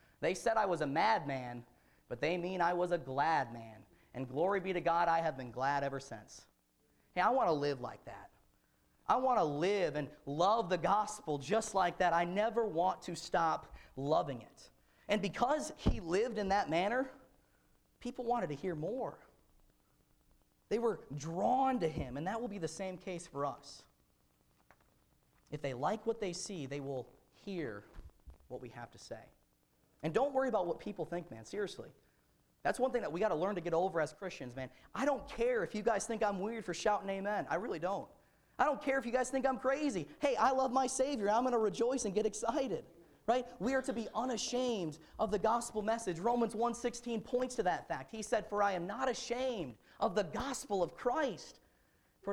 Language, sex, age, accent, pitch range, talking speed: English, male, 40-59, American, 150-230 Hz, 205 wpm